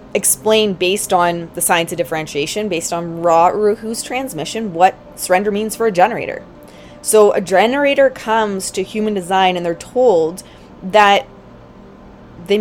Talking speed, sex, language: 150 wpm, female, English